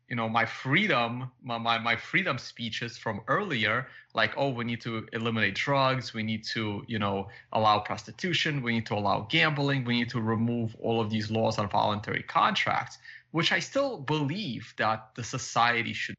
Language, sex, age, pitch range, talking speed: English, male, 20-39, 110-135 Hz, 180 wpm